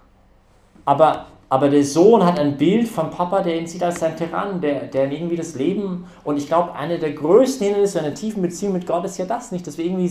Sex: male